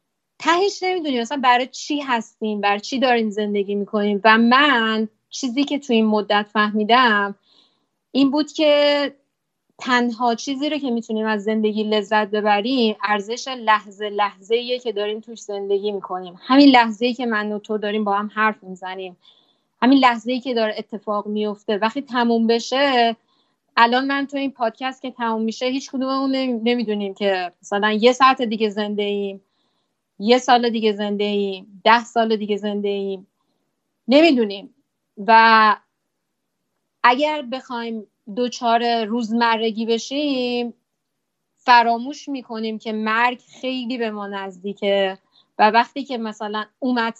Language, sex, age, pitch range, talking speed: Persian, female, 30-49, 210-255 Hz, 135 wpm